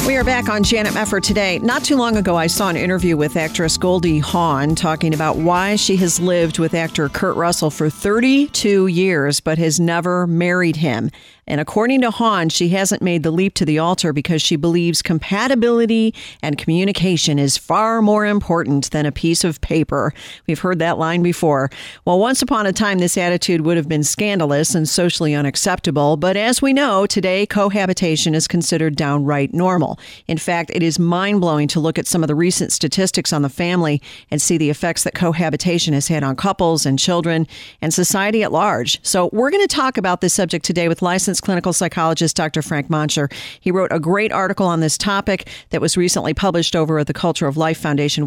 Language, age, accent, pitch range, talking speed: English, 50-69, American, 155-195 Hz, 200 wpm